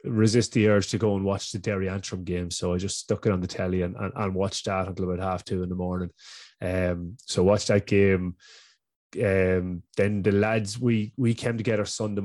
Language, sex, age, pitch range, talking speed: English, male, 20-39, 95-110 Hz, 220 wpm